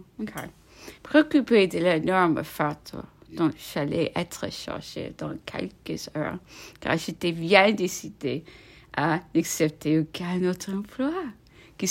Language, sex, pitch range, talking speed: English, female, 150-190 Hz, 110 wpm